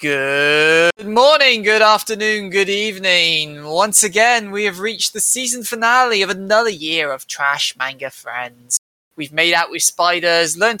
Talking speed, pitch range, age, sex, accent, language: 150 wpm, 160-220 Hz, 20-39, male, British, English